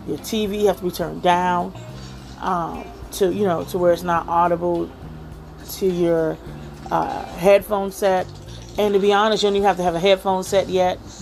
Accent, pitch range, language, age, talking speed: American, 155-205 Hz, English, 30-49, 185 wpm